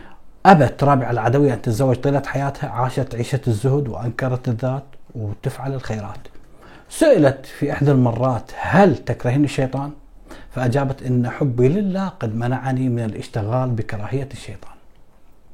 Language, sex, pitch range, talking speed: Arabic, male, 115-145 Hz, 120 wpm